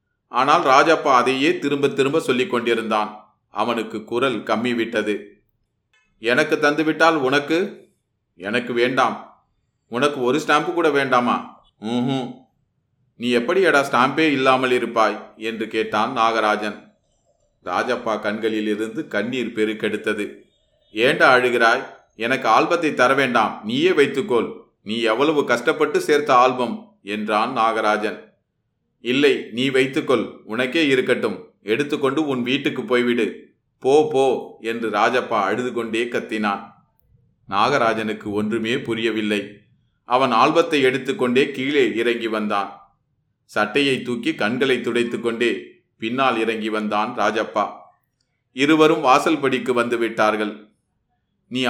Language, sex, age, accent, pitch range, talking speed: Tamil, male, 30-49, native, 110-135 Hz, 100 wpm